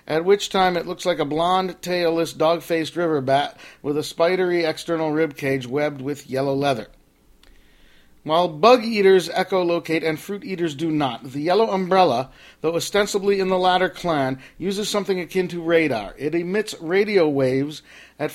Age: 50-69